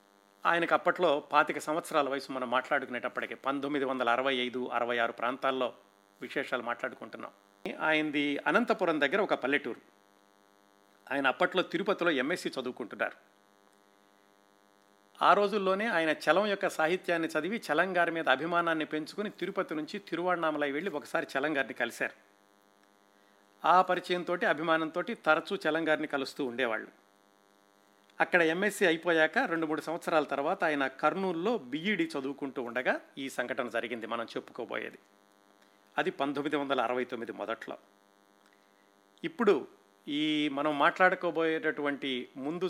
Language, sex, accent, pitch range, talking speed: Telugu, male, native, 100-165 Hz, 110 wpm